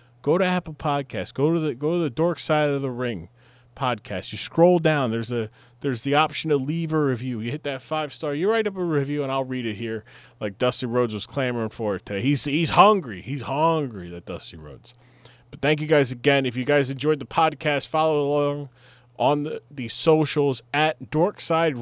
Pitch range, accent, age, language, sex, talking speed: 120-145 Hz, American, 20-39, English, male, 215 wpm